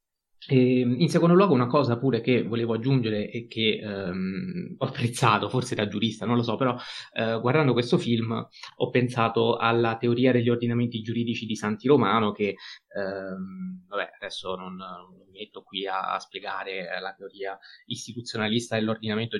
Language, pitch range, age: Italian, 105-135 Hz, 20-39